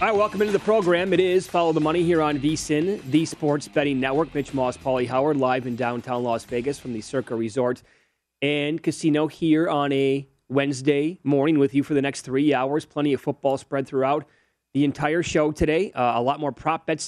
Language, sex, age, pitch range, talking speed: English, male, 30-49, 130-155 Hz, 210 wpm